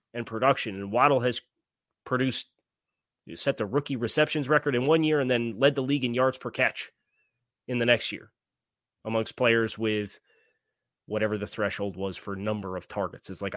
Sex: male